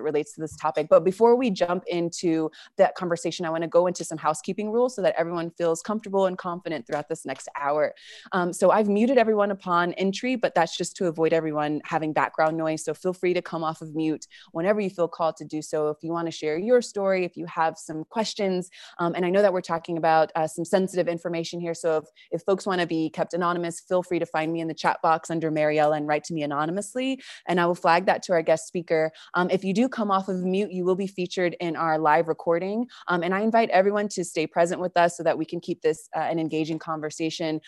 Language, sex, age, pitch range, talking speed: English, female, 20-39, 160-185 Hz, 250 wpm